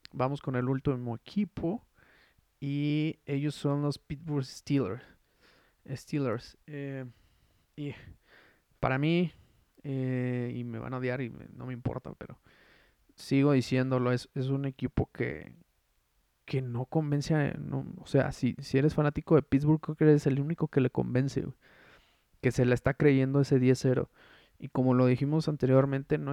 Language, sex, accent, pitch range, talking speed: Spanish, male, Mexican, 125-145 Hz, 155 wpm